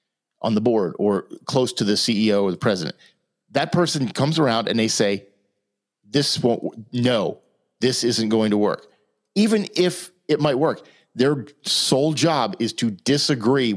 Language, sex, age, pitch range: English, male, 40-59, 105-135 Hz